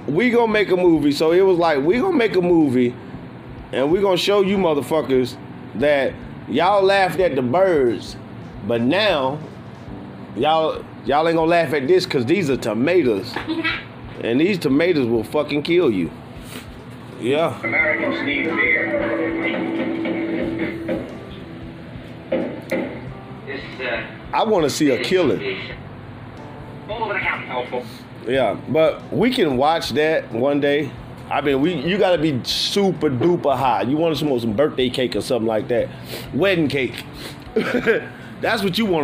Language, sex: English, male